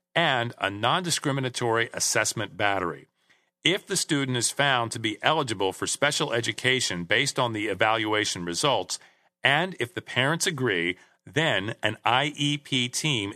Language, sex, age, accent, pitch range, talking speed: English, male, 40-59, American, 115-155 Hz, 135 wpm